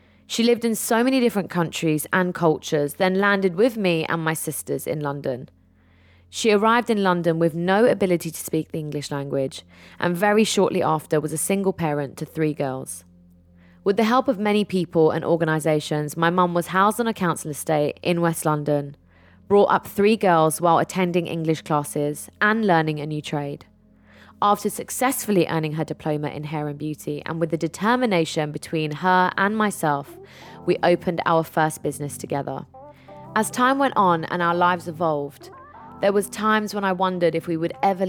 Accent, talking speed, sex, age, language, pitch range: British, 180 wpm, female, 20-39, English, 150-190 Hz